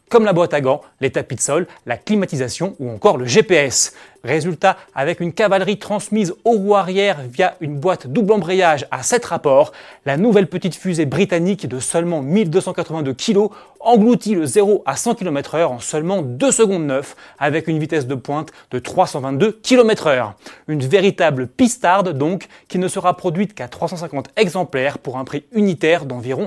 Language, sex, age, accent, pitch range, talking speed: French, male, 30-49, French, 145-200 Hz, 175 wpm